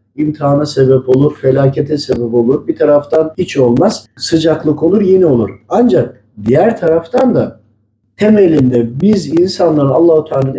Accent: native